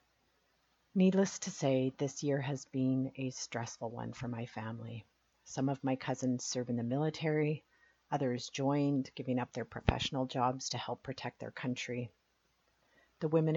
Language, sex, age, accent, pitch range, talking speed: English, female, 40-59, American, 125-145 Hz, 155 wpm